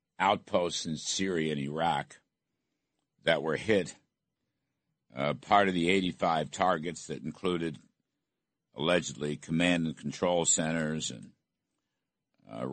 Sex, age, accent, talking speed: male, 60-79, American, 110 wpm